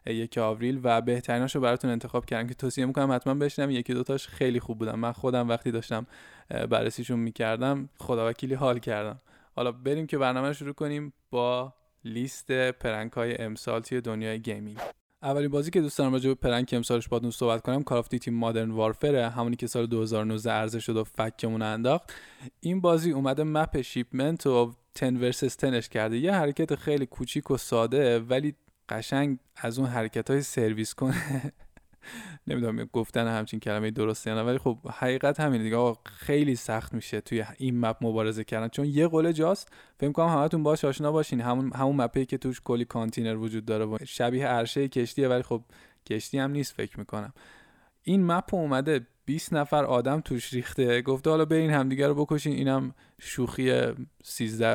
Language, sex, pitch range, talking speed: Persian, male, 115-140 Hz, 175 wpm